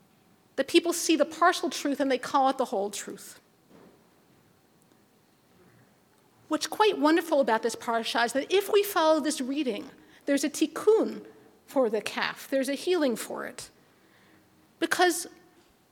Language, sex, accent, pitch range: English, female, American, 250-335 Hz